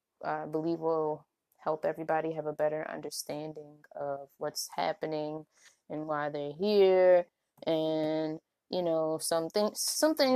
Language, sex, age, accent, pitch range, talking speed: English, female, 20-39, American, 155-180 Hz, 120 wpm